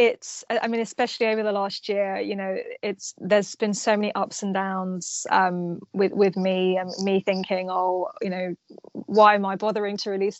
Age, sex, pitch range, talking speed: 20-39, female, 195-225 Hz, 195 wpm